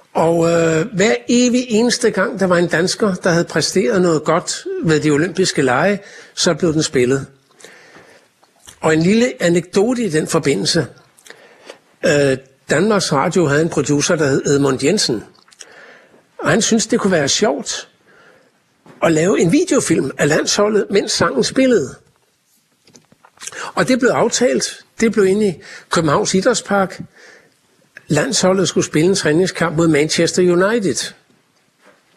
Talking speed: 140 wpm